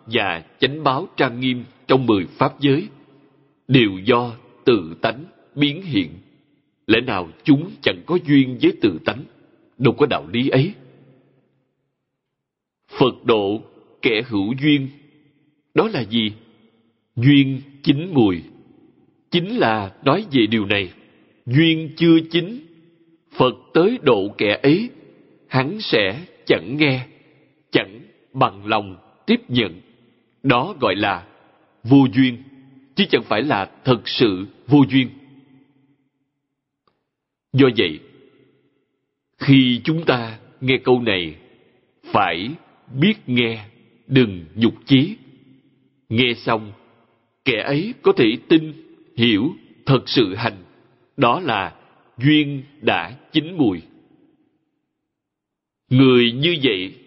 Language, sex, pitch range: Vietnamese, male, 115-150 Hz